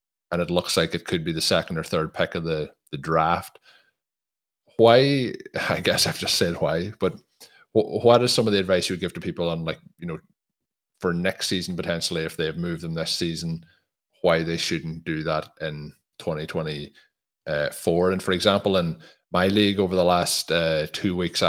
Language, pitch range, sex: English, 80-95 Hz, male